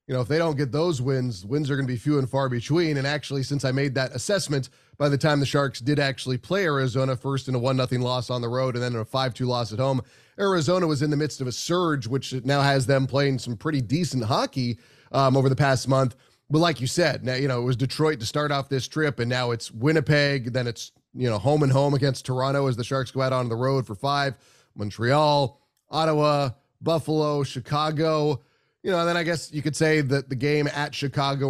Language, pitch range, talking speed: English, 130-150 Hz, 245 wpm